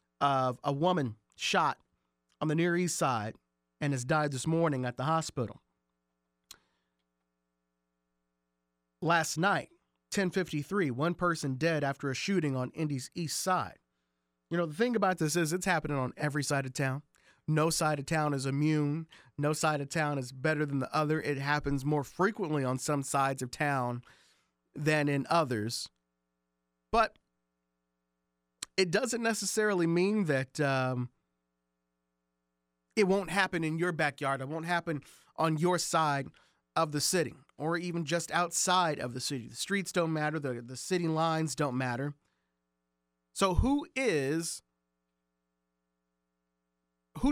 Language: English